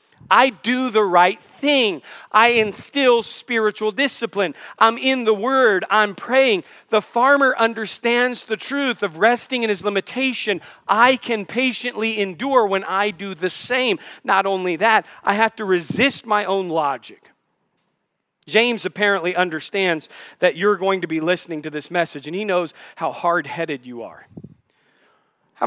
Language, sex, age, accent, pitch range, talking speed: English, male, 40-59, American, 185-250 Hz, 150 wpm